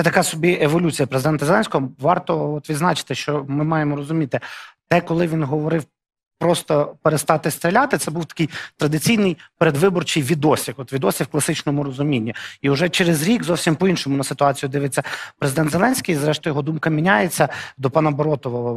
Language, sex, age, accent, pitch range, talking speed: Russian, male, 30-49, native, 130-160 Hz, 155 wpm